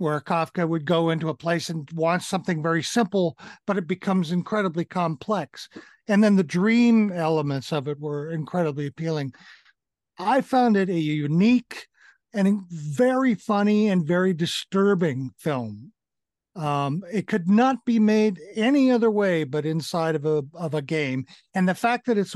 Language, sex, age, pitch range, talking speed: English, male, 50-69, 155-205 Hz, 160 wpm